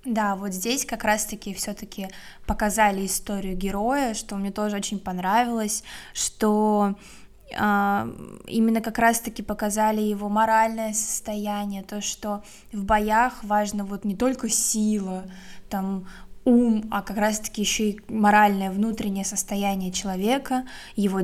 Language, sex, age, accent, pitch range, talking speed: Russian, female, 20-39, native, 200-225 Hz, 125 wpm